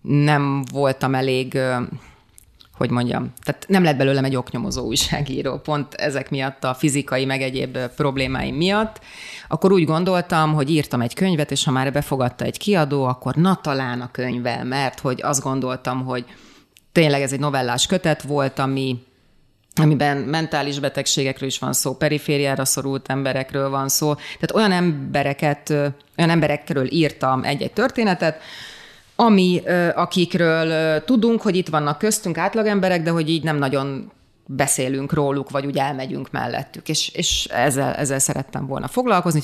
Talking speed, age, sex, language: 145 wpm, 30-49, female, Hungarian